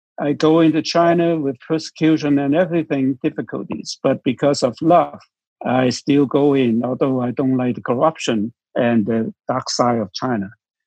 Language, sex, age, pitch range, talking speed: English, male, 60-79, 120-150 Hz, 160 wpm